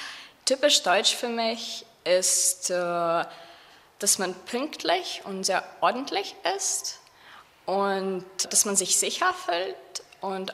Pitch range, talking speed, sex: 175-225 Hz, 110 wpm, female